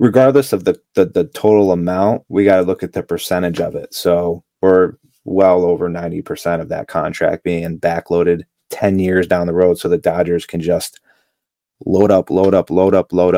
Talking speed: 195 wpm